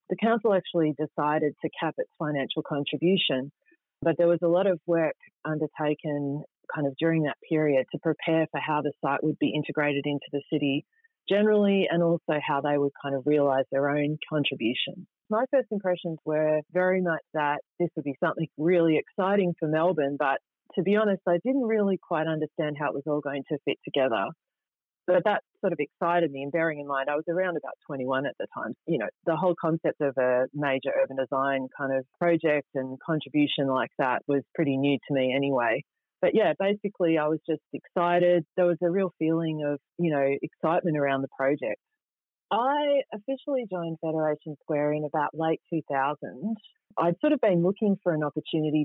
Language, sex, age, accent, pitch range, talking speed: English, female, 30-49, Australian, 145-180 Hz, 190 wpm